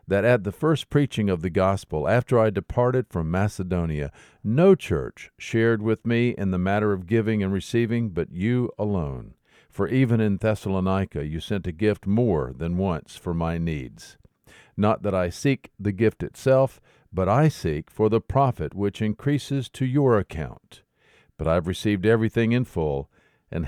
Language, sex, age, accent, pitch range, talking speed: English, male, 50-69, American, 85-115 Hz, 170 wpm